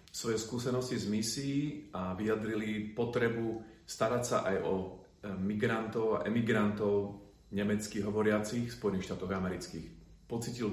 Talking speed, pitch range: 110 wpm, 95-115 Hz